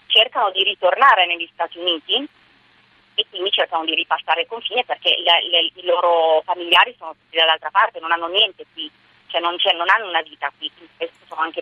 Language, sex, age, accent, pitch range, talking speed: Italian, female, 30-49, native, 160-185 Hz, 195 wpm